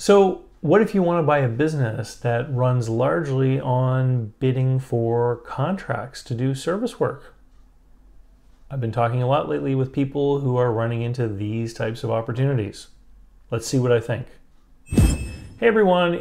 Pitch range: 115-135 Hz